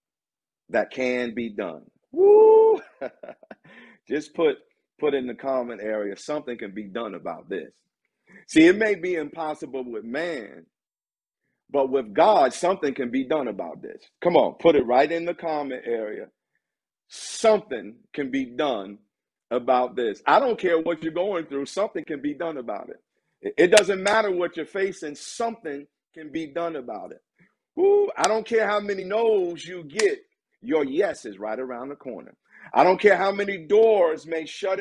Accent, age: American, 50-69